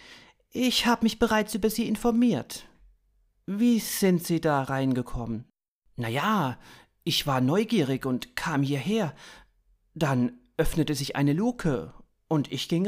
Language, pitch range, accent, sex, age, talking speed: German, 135-205 Hz, German, male, 40-59, 130 wpm